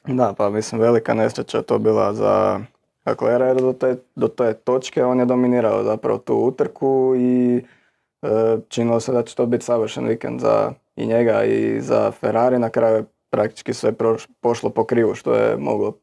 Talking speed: 185 wpm